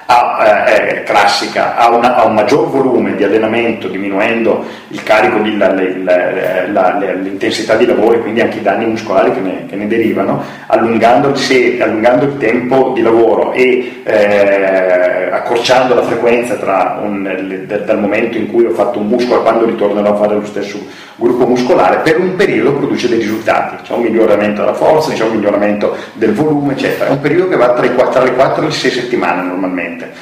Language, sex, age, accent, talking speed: Italian, male, 40-59, native, 190 wpm